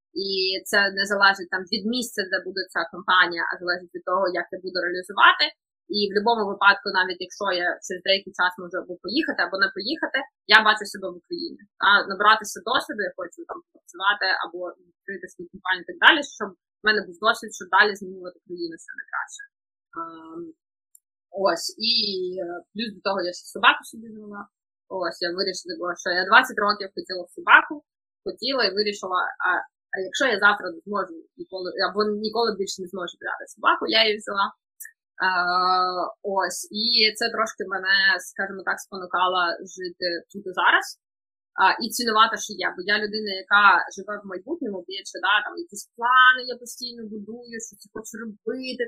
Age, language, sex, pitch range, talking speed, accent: 20-39, Ukrainian, female, 185-240 Hz, 175 wpm, native